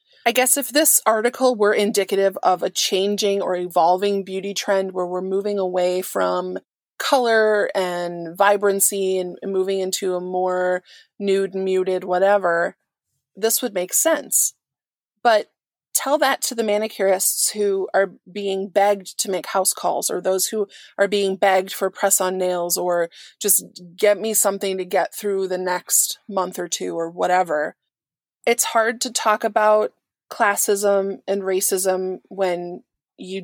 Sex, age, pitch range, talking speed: female, 20-39, 185-210 Hz, 150 wpm